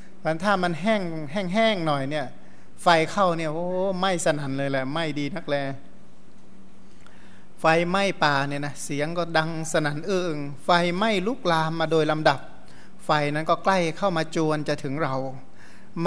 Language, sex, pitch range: Thai, male, 145-175 Hz